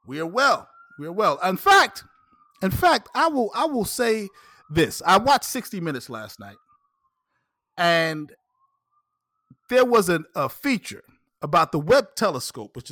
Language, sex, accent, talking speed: English, male, American, 155 wpm